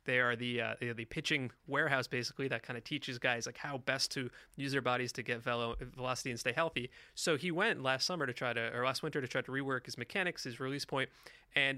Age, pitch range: 30-49, 125-155 Hz